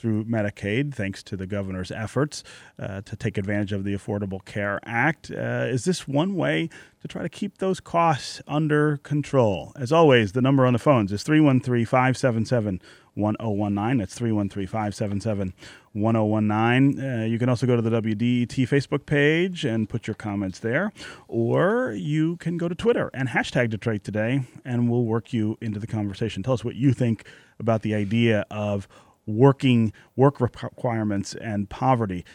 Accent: American